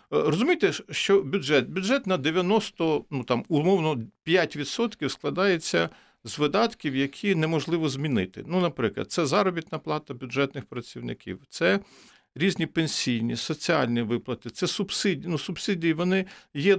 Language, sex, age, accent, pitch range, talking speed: Ukrainian, male, 50-69, native, 140-190 Hz, 120 wpm